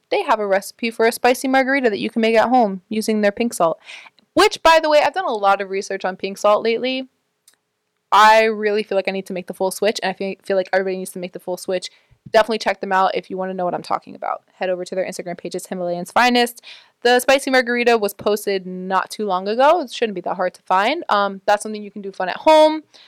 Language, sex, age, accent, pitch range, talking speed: English, female, 20-39, American, 190-235 Hz, 265 wpm